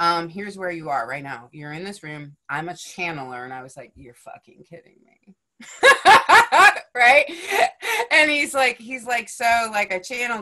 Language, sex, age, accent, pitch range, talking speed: English, female, 30-49, American, 145-200 Hz, 185 wpm